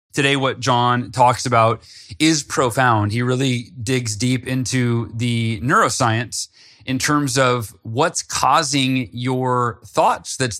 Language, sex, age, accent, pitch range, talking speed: English, male, 30-49, American, 115-140 Hz, 125 wpm